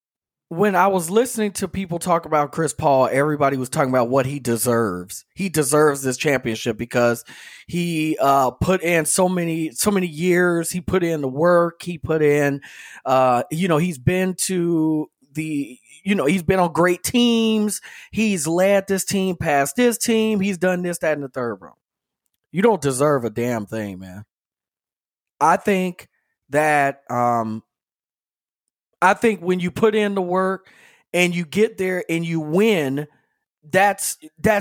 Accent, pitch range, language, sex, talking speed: American, 150-200 Hz, English, male, 165 wpm